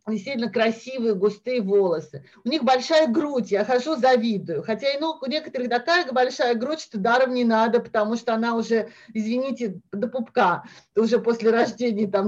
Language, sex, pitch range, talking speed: English, female, 215-285 Hz, 170 wpm